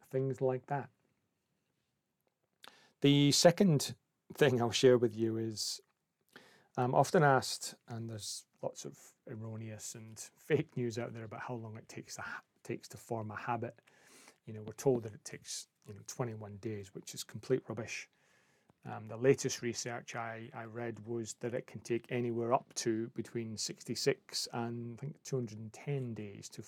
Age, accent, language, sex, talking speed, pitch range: 30-49, British, English, male, 165 wpm, 115-135 Hz